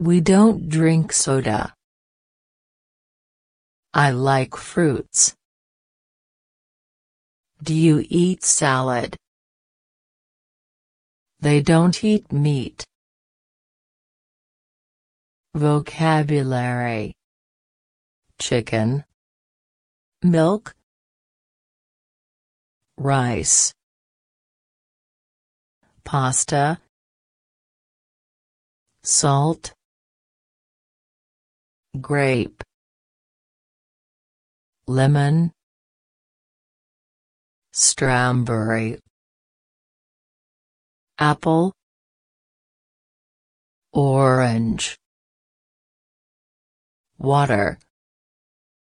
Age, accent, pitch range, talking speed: 40-59, American, 125-155 Hz, 35 wpm